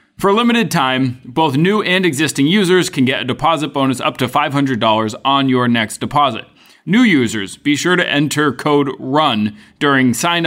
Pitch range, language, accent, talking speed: 125-155 Hz, English, American, 180 wpm